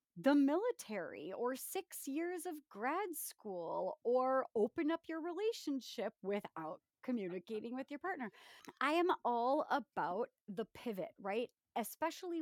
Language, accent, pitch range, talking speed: English, American, 185-285 Hz, 125 wpm